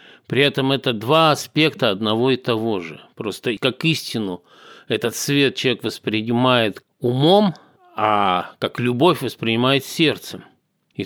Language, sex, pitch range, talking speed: Russian, male, 110-140 Hz, 125 wpm